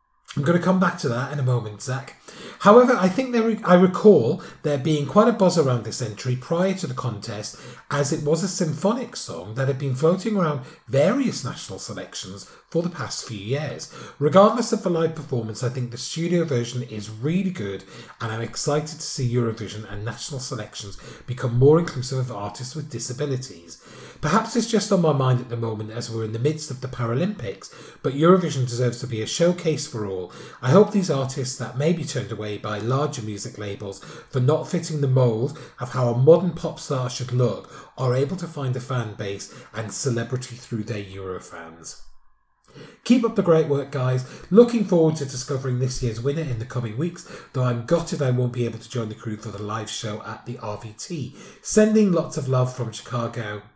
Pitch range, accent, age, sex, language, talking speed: 115-160 Hz, British, 40-59, male, English, 205 wpm